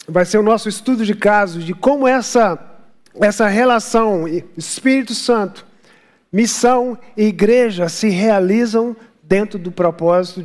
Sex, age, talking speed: male, 50-69, 125 wpm